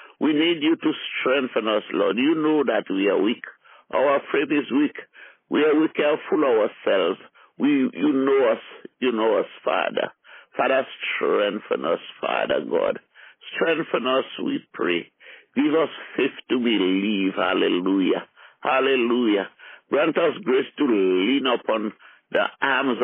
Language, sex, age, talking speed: English, male, 60-79, 140 wpm